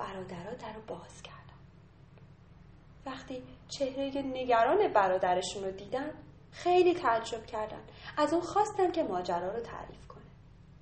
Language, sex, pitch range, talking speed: Persian, female, 185-315 Hz, 115 wpm